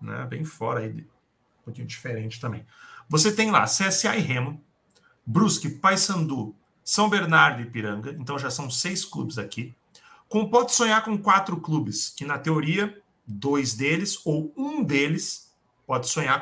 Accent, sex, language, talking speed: Brazilian, male, Portuguese, 155 wpm